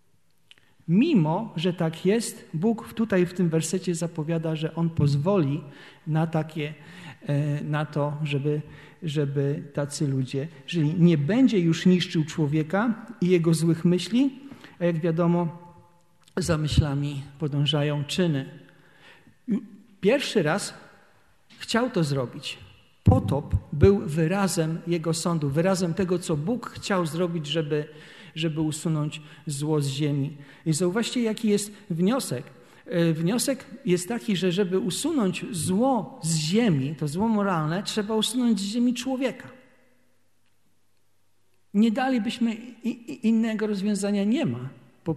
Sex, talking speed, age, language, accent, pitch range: male, 115 wpm, 50-69, Polish, native, 155-200 Hz